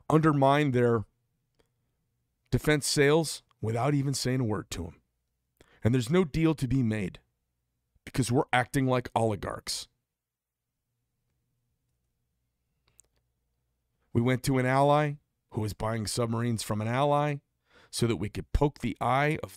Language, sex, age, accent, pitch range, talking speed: English, male, 40-59, American, 105-150 Hz, 130 wpm